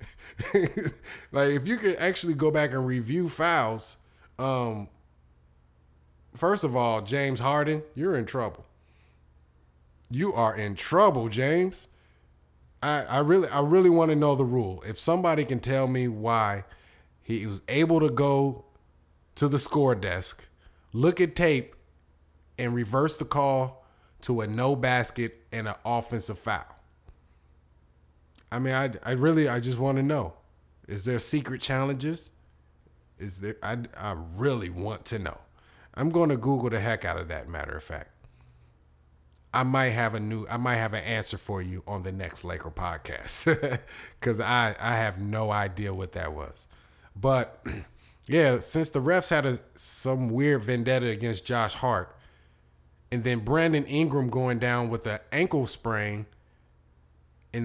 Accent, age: American, 20-39